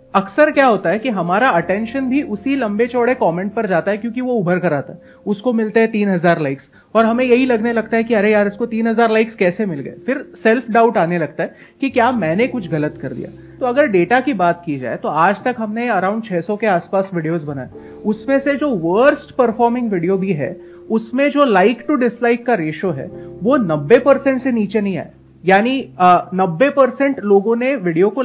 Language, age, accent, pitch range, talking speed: Hindi, 30-49, native, 185-250 Hz, 210 wpm